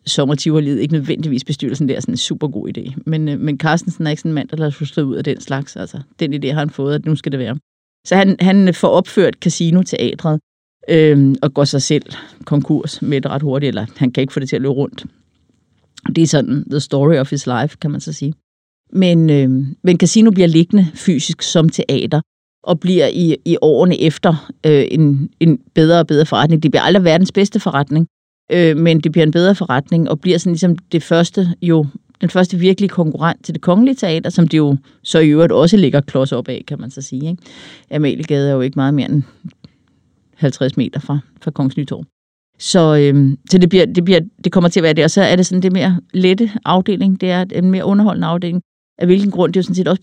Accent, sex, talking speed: native, female, 230 wpm